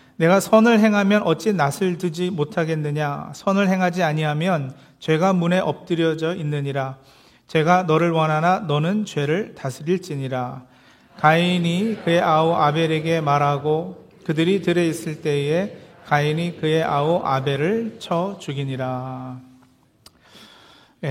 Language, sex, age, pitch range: Korean, male, 40-59, 150-195 Hz